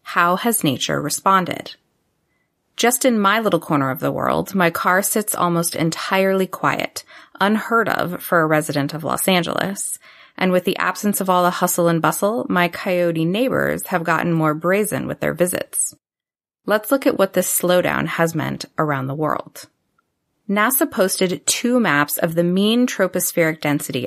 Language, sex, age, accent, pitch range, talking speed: English, female, 30-49, American, 160-200 Hz, 165 wpm